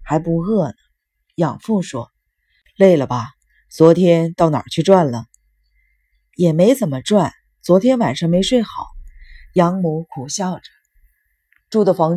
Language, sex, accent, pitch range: Chinese, female, native, 145-195 Hz